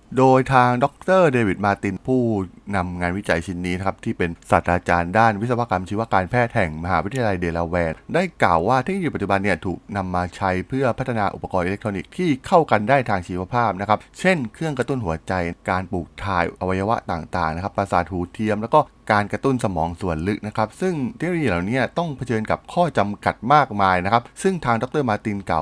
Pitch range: 90-125 Hz